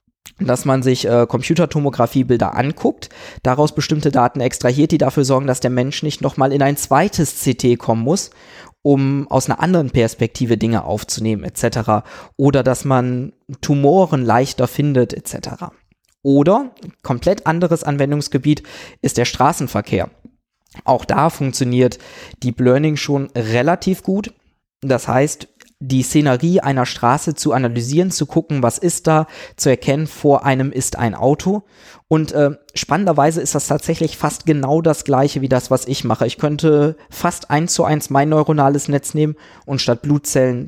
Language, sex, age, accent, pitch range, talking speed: German, male, 20-39, German, 125-155 Hz, 150 wpm